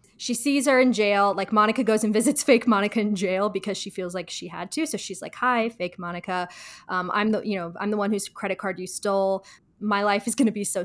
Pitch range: 195-250 Hz